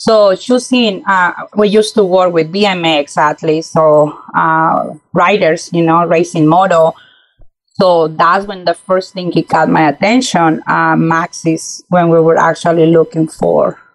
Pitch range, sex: 165-195 Hz, female